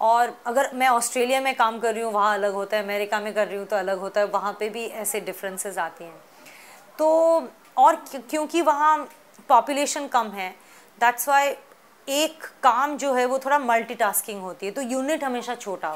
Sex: female